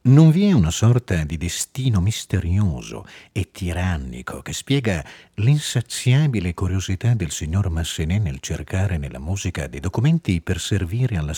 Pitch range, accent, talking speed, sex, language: 80-120 Hz, native, 135 wpm, male, Italian